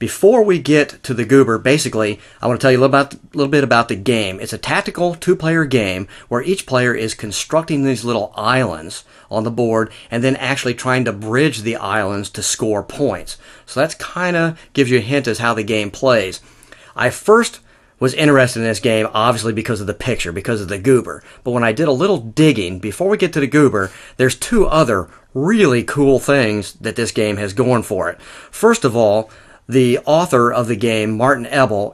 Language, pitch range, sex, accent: English, 110-135 Hz, male, American